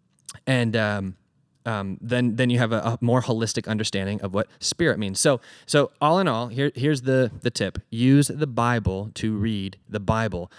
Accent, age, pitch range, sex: American, 20-39, 105-130 Hz, male